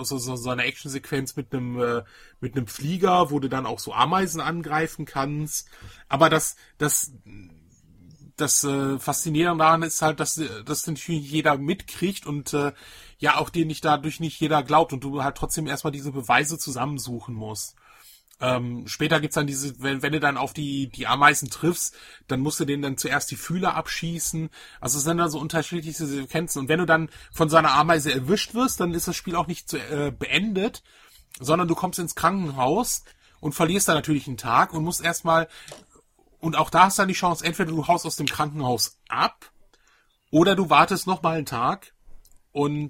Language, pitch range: German, 135-165 Hz